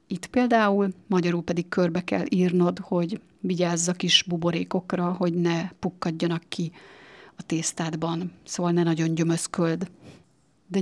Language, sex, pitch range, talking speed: Hungarian, female, 165-190 Hz, 130 wpm